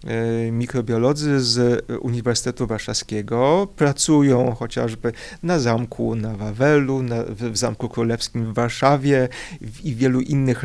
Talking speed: 120 wpm